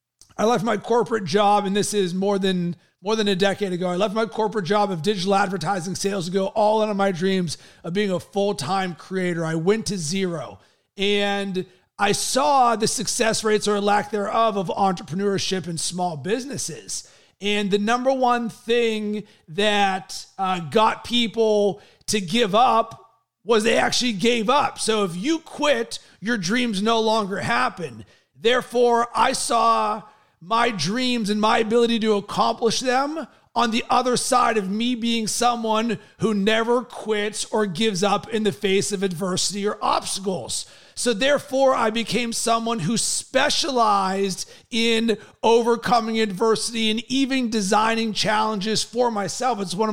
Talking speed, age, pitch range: 155 wpm, 30-49, 195-230 Hz